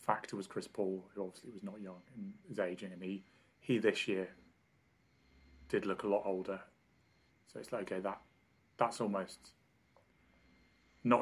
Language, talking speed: English, 160 wpm